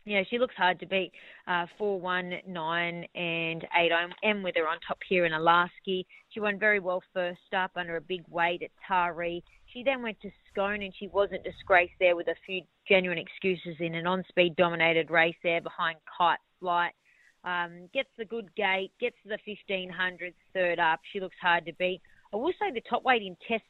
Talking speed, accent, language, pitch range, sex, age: 210 wpm, Australian, English, 175-205 Hz, female, 30-49